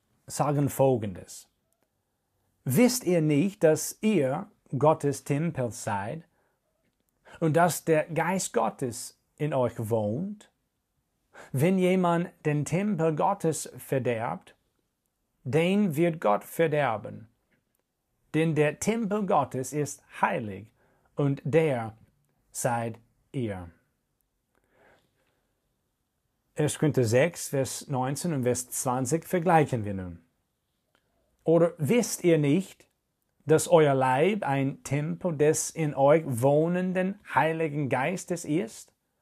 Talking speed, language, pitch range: 100 wpm, German, 125-165 Hz